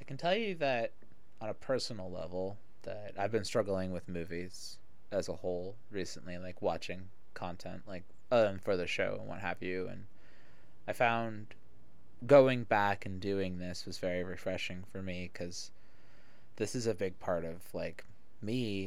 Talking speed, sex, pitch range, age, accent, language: 170 wpm, male, 90-115 Hz, 20-39, American, English